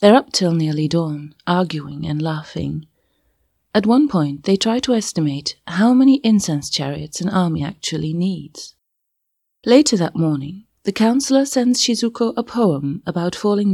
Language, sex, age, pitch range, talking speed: English, female, 30-49, 150-210 Hz, 150 wpm